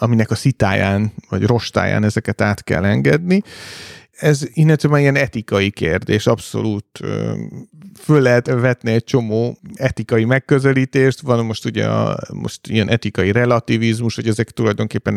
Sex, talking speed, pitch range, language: male, 130 wpm, 110-135 Hz, Hungarian